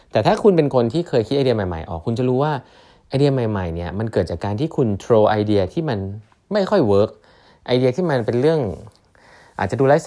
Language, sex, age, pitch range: Thai, male, 20-39, 95-125 Hz